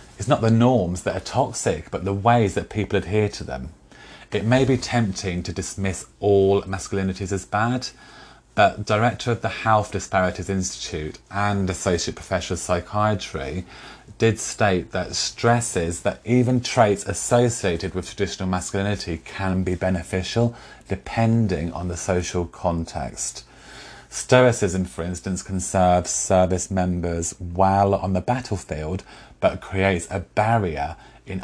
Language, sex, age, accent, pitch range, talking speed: English, male, 30-49, British, 90-105 Hz, 135 wpm